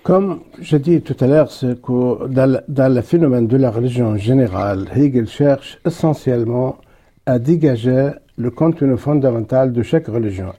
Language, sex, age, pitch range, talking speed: French, male, 60-79, 120-155 Hz, 140 wpm